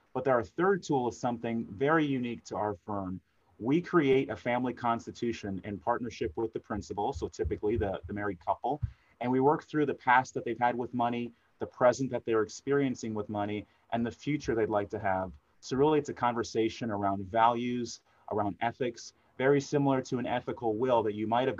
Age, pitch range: 30-49, 110-130 Hz